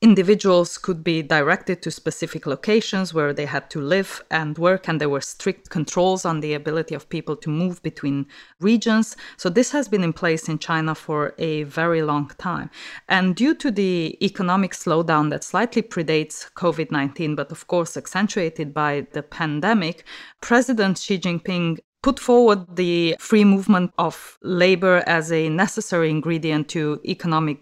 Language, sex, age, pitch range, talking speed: English, female, 20-39, 155-190 Hz, 160 wpm